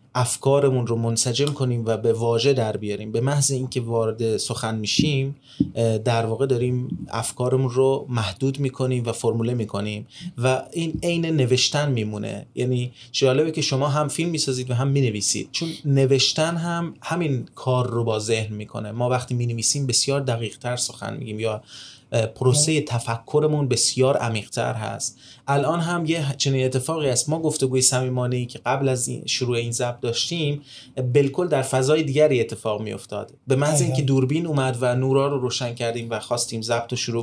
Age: 30-49